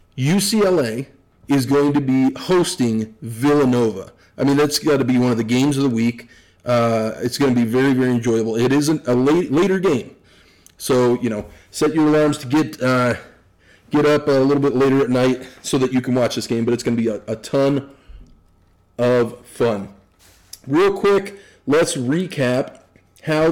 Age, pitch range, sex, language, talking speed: 40-59, 100-140 Hz, male, English, 190 wpm